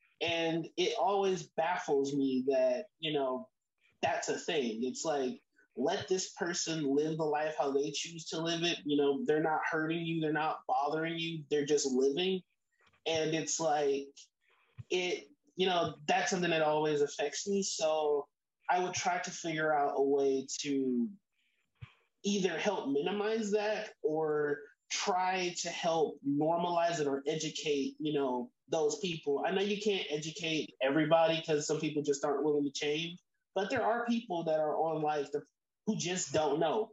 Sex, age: male, 20-39